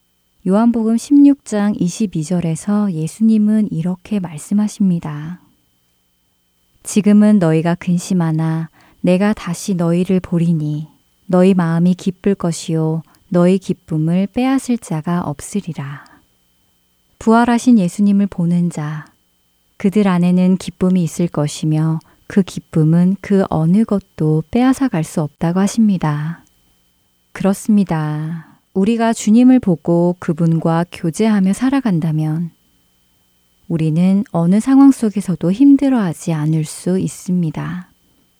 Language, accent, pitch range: Korean, native, 160-205 Hz